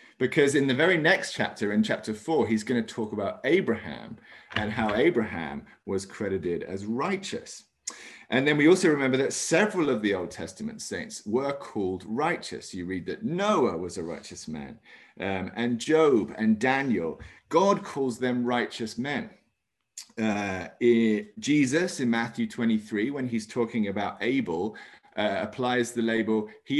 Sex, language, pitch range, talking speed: male, English, 110-150 Hz, 155 wpm